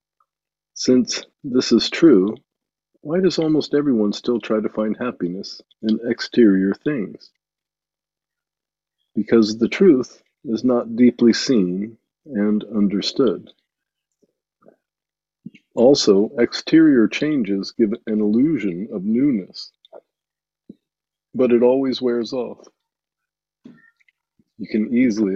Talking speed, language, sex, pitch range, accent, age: 95 wpm, English, male, 100-125 Hz, American, 50-69